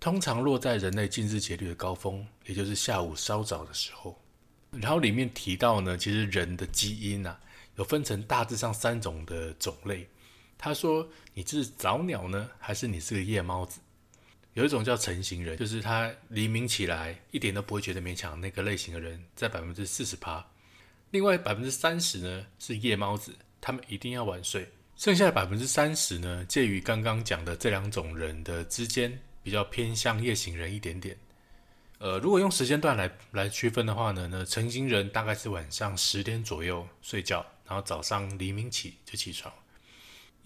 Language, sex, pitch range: Chinese, male, 95-115 Hz